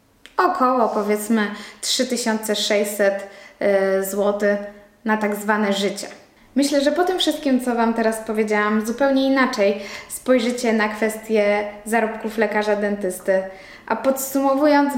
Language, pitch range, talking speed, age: Polish, 210-260 Hz, 105 wpm, 10-29